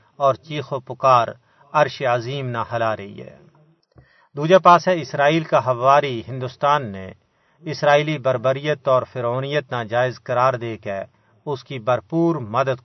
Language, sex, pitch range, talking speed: Urdu, male, 125-145 Hz, 135 wpm